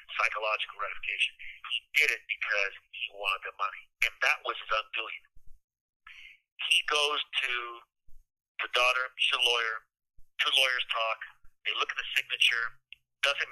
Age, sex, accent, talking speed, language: 50-69, male, American, 140 wpm, English